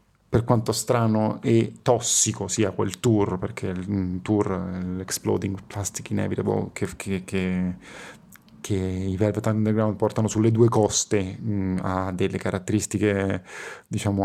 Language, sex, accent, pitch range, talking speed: Italian, male, native, 100-115 Hz, 125 wpm